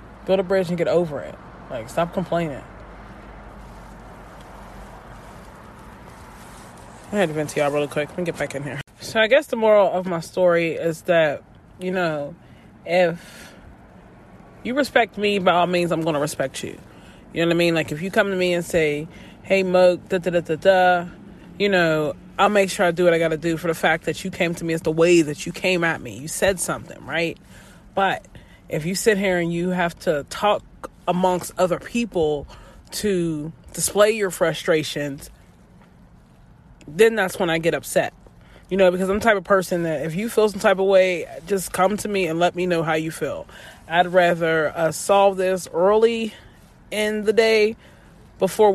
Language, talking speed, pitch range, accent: English, 190 wpm, 165-200 Hz, American